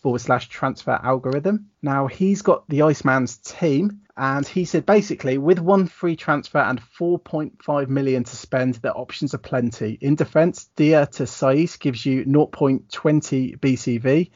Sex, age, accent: male, 30-49, British